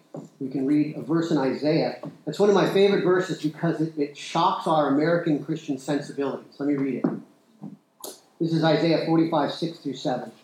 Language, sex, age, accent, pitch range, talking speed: English, male, 50-69, American, 145-180 Hz, 165 wpm